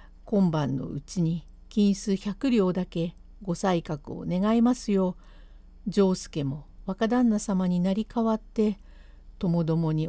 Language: Japanese